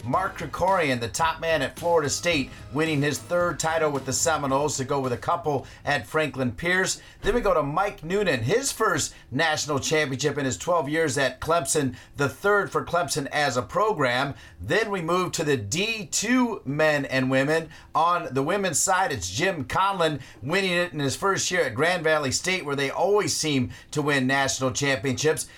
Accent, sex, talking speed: American, male, 190 wpm